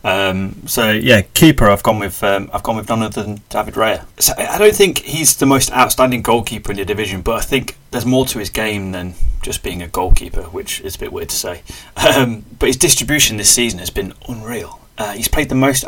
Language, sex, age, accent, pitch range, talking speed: English, male, 30-49, British, 95-125 Hz, 235 wpm